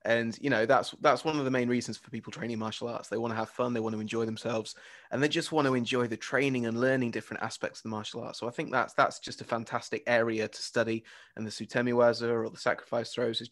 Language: English